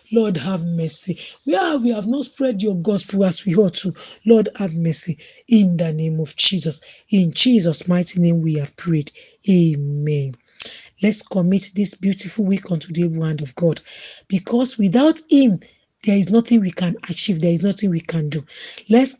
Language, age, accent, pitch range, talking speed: English, 40-59, Nigerian, 175-240 Hz, 175 wpm